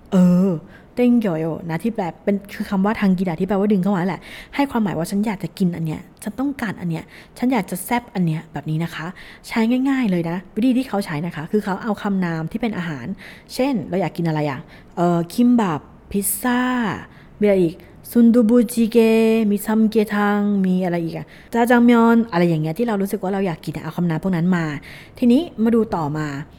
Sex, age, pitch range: female, 20-39, 175-225 Hz